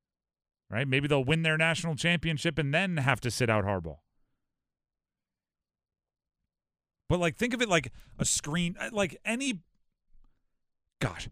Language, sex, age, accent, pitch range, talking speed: English, male, 40-59, American, 125-190 Hz, 135 wpm